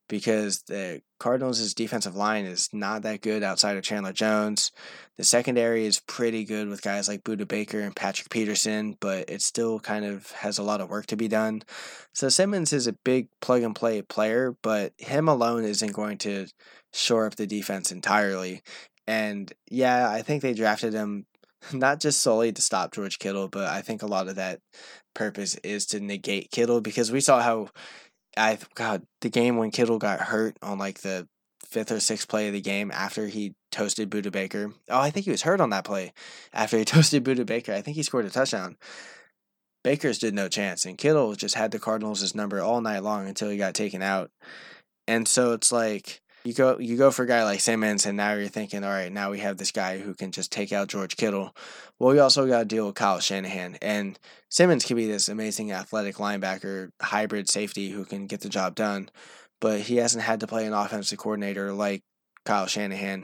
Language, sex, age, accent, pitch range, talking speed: English, male, 10-29, American, 100-115 Hz, 205 wpm